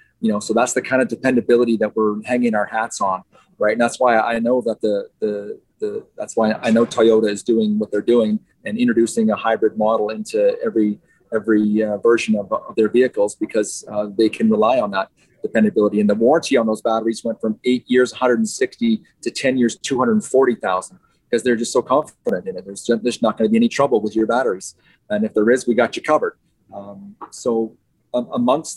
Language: English